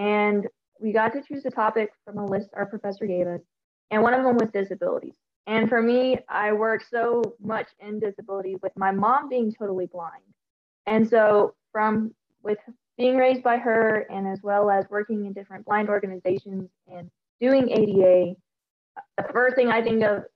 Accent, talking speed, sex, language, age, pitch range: American, 180 wpm, female, English, 20-39, 195-235 Hz